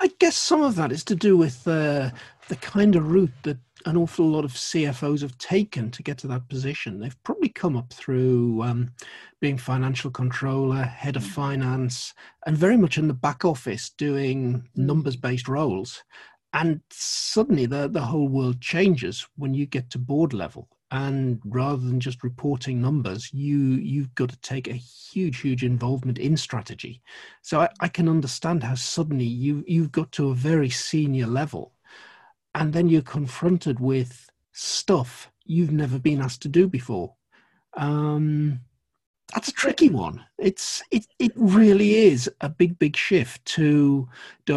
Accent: British